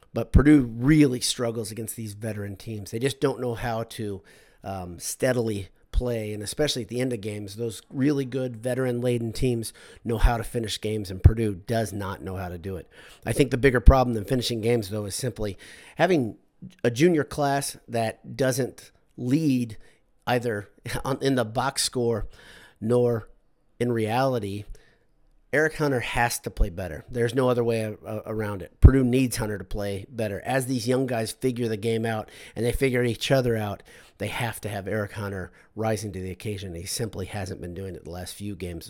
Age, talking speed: 40-59, 185 wpm